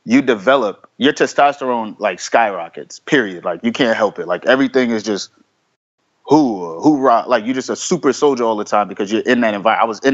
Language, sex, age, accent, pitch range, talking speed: English, male, 30-49, American, 115-140 Hz, 215 wpm